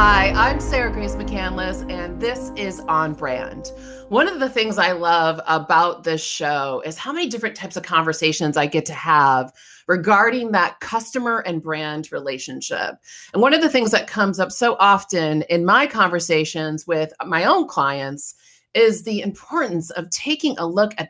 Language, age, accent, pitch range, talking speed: English, 30-49, American, 155-225 Hz, 175 wpm